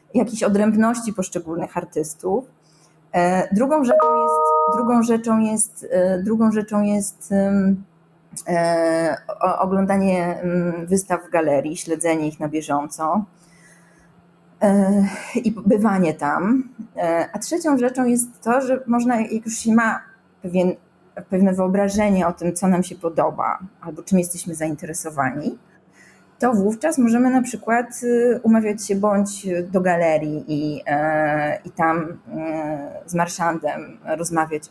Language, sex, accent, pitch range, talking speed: Polish, female, native, 165-215 Hz, 100 wpm